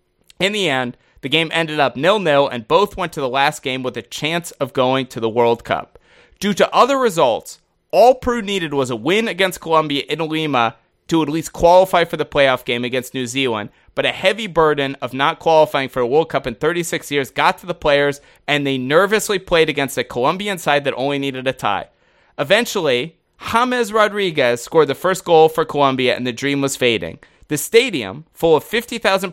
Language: English